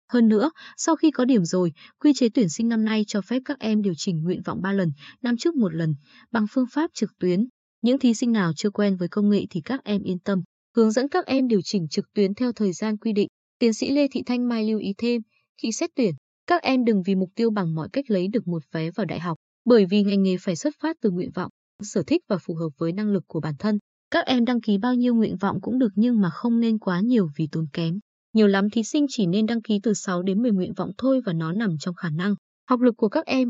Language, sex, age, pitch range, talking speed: Vietnamese, female, 20-39, 190-250 Hz, 275 wpm